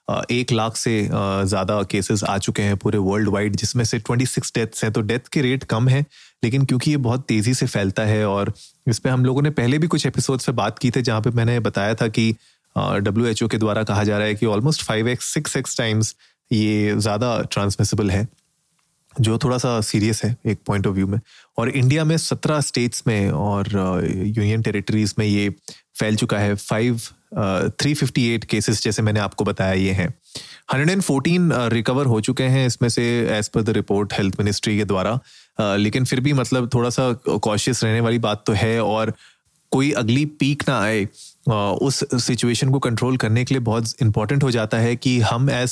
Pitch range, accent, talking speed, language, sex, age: 110-135 Hz, native, 200 wpm, Hindi, male, 30-49